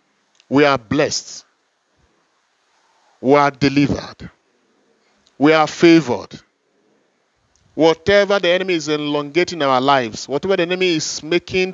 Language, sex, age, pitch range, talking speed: English, male, 40-59, 140-195 Hz, 105 wpm